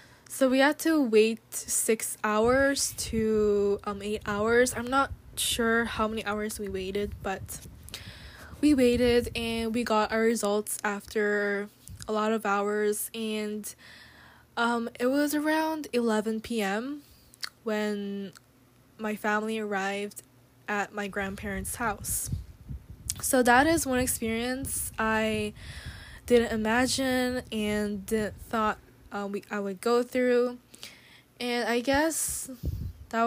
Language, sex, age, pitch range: Korean, female, 10-29, 205-235 Hz